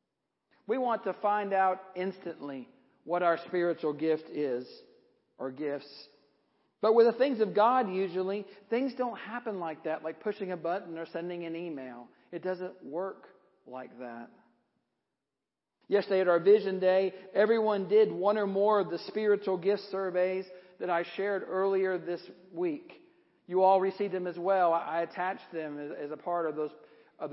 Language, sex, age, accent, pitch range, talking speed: English, male, 50-69, American, 155-200 Hz, 160 wpm